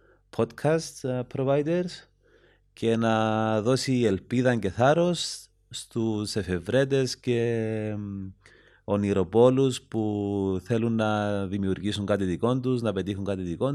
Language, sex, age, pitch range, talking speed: Greek, male, 30-49, 95-120 Hz, 95 wpm